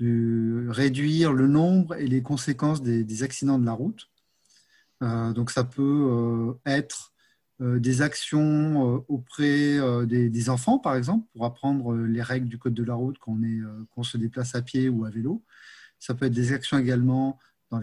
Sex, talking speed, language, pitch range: male, 190 wpm, French, 120-140 Hz